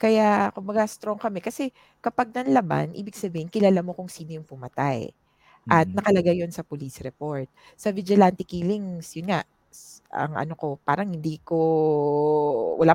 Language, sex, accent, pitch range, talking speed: English, female, Filipino, 150-200 Hz, 160 wpm